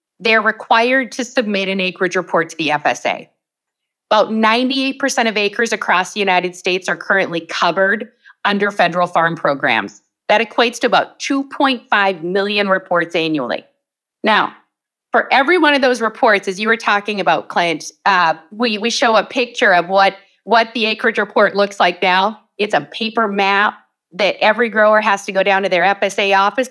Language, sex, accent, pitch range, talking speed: English, female, American, 190-250 Hz, 170 wpm